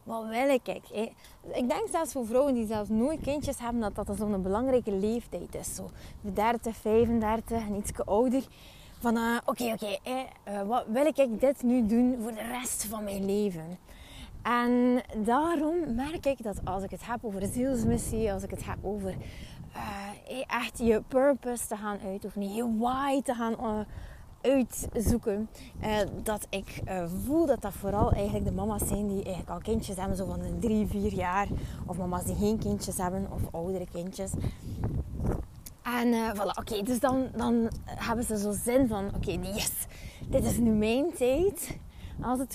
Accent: Dutch